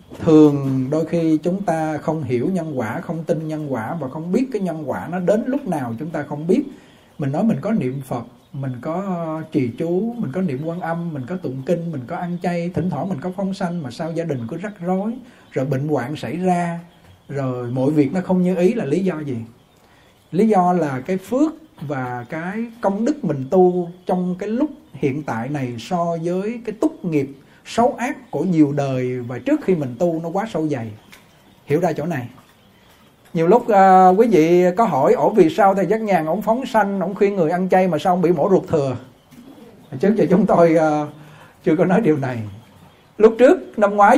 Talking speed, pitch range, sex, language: 220 wpm, 150-200 Hz, male, Vietnamese